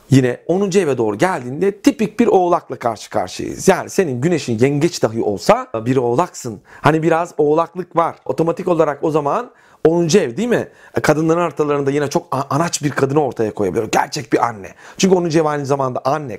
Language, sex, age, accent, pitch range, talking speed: Turkish, male, 40-59, native, 135-200 Hz, 175 wpm